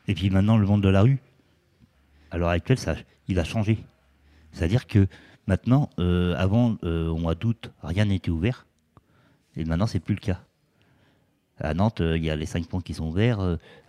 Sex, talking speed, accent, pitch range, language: male, 200 wpm, French, 80-105 Hz, French